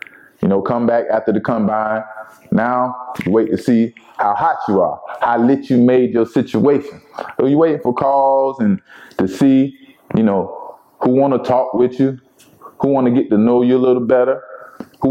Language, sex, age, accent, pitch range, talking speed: English, male, 20-39, American, 110-130 Hz, 195 wpm